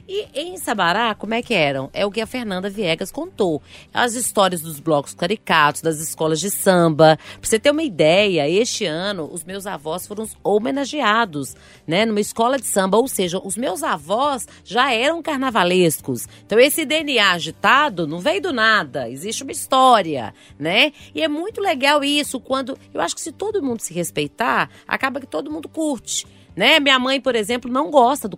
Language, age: Portuguese, 30-49